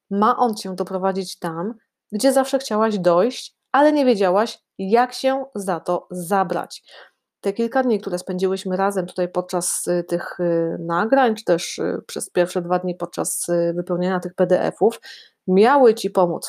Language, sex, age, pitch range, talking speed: Polish, female, 30-49, 180-225 Hz, 145 wpm